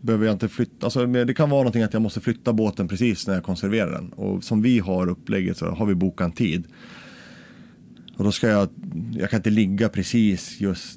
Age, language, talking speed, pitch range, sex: 30-49, Swedish, 220 wpm, 90-110 Hz, male